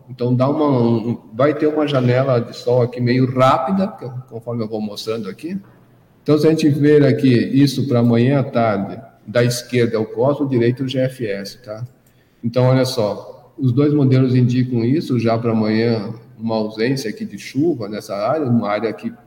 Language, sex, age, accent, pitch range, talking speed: Portuguese, male, 50-69, Brazilian, 115-140 Hz, 185 wpm